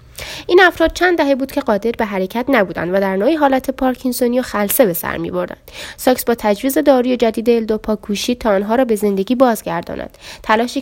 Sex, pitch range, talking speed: female, 200-255 Hz, 190 wpm